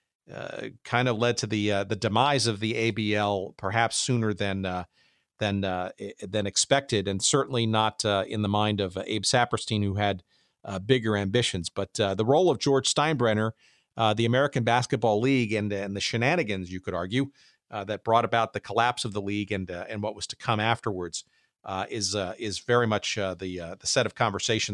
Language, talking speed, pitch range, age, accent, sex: English, 205 wpm, 105-130 Hz, 50-69, American, male